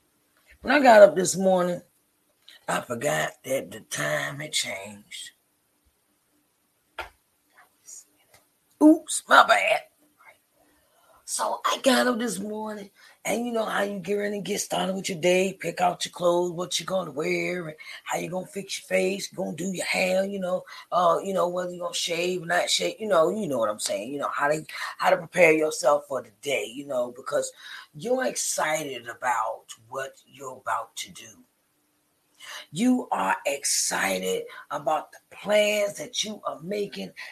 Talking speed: 170 wpm